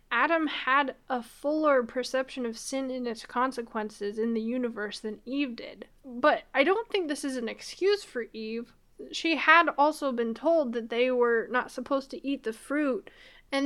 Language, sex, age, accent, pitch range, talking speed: English, female, 10-29, American, 230-275 Hz, 180 wpm